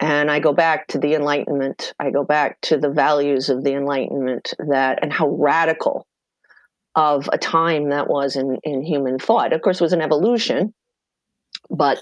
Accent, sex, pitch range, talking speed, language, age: American, female, 140-190 Hz, 180 wpm, English, 40-59